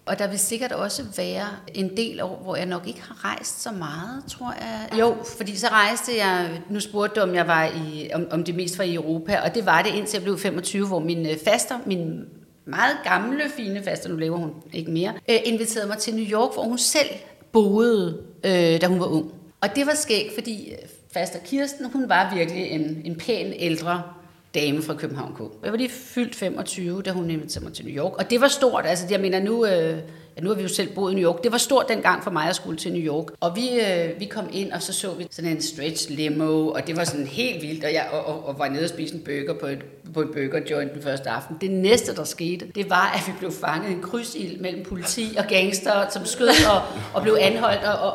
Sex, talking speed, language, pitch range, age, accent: female, 240 wpm, Danish, 165-225 Hz, 40-59, native